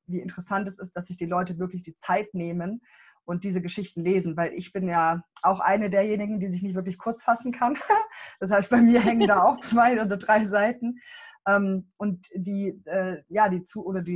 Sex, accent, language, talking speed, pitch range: female, German, German, 180 wpm, 180-225 Hz